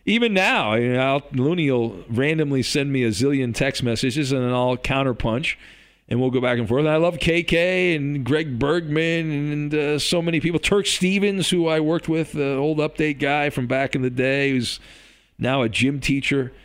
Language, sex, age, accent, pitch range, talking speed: English, male, 40-59, American, 130-170 Hz, 190 wpm